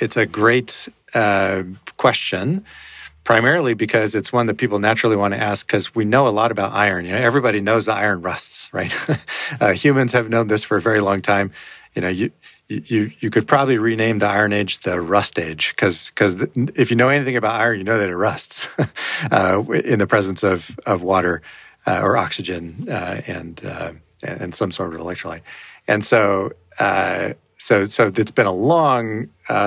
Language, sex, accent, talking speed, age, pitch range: English, male, American, 195 wpm, 40-59, 90-115 Hz